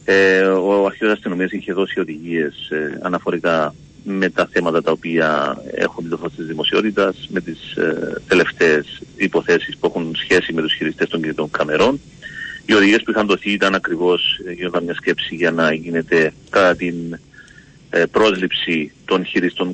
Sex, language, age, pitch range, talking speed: male, Greek, 30-49, 85-100 Hz, 140 wpm